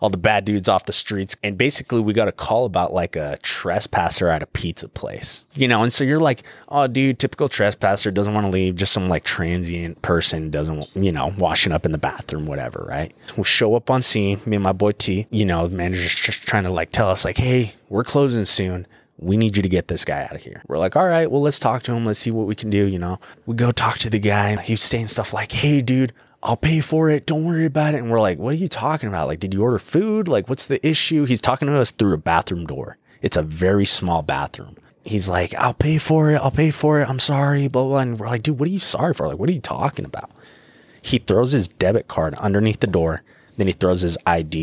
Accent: American